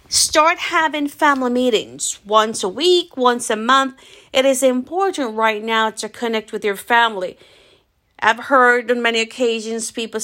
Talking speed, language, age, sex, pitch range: 150 wpm, English, 40-59, female, 210-270 Hz